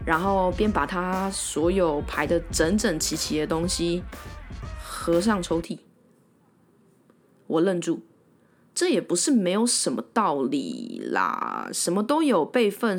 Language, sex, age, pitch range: Chinese, female, 20-39, 170-250 Hz